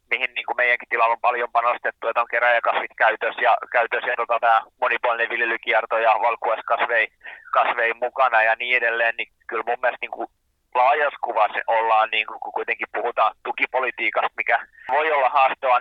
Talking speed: 145 wpm